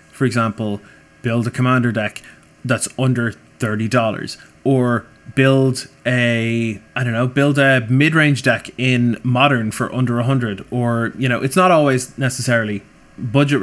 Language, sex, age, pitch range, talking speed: English, male, 20-39, 115-135 Hz, 140 wpm